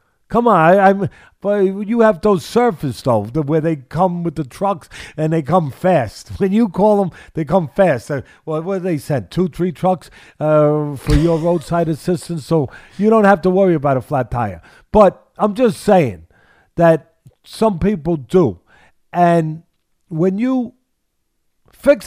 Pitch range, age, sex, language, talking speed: 140-210 Hz, 50-69, male, English, 170 wpm